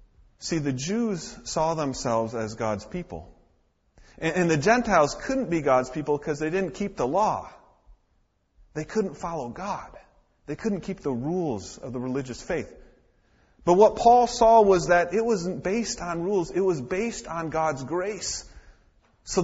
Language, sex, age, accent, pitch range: Korean, male, 30-49, American, 115-180 Hz